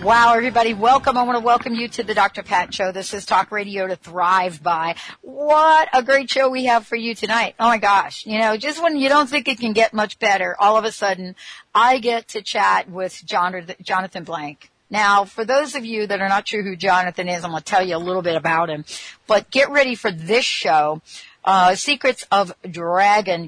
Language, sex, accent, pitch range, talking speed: English, female, American, 185-230 Hz, 220 wpm